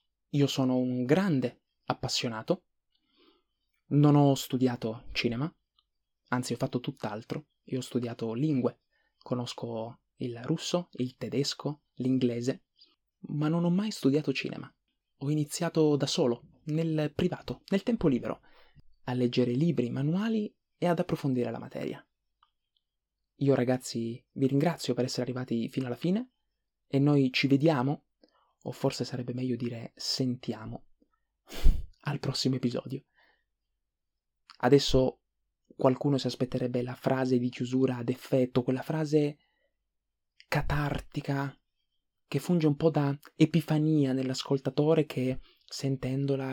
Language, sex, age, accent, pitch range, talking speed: Italian, male, 20-39, native, 125-155 Hz, 120 wpm